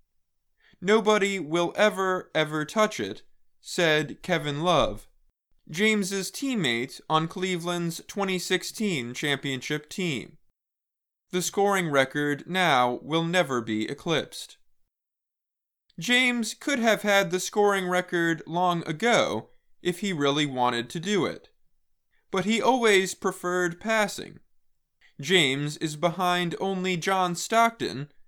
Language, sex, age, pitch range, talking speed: English, male, 20-39, 160-205 Hz, 110 wpm